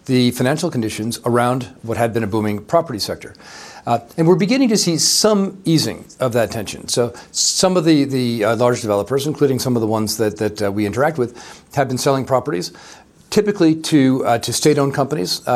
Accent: American